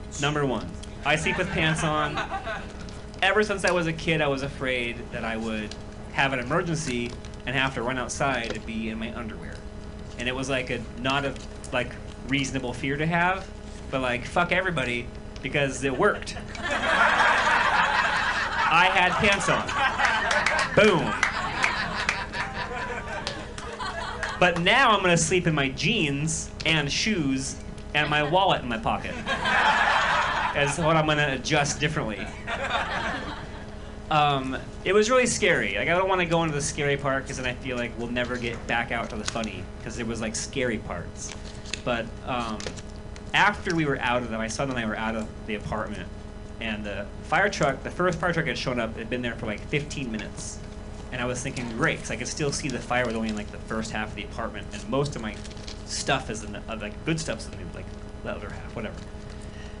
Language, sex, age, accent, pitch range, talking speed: English, male, 30-49, American, 105-150 Hz, 195 wpm